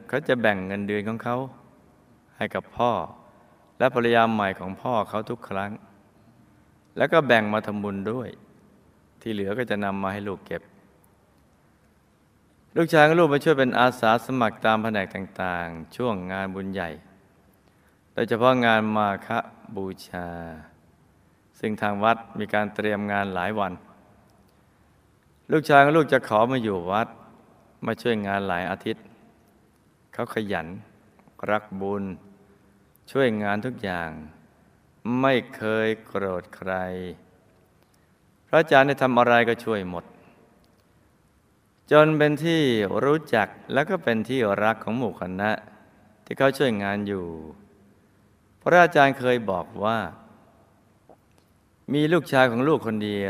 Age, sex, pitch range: 20-39, male, 95-120 Hz